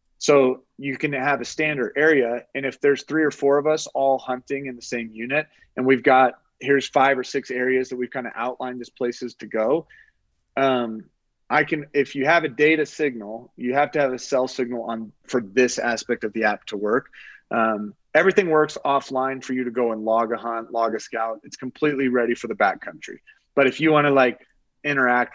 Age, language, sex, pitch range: 30-49, English, male, 115-135 Hz